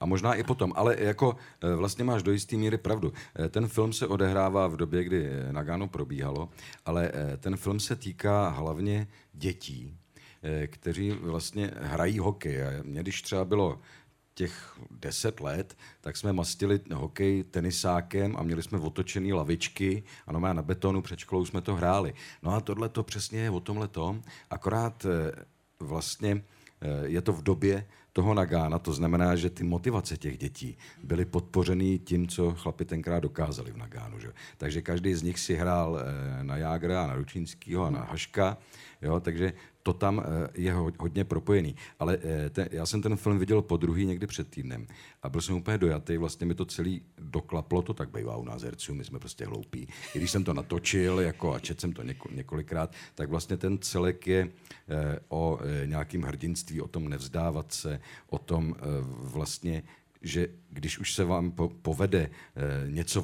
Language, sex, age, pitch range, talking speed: Czech, male, 50-69, 80-100 Hz, 165 wpm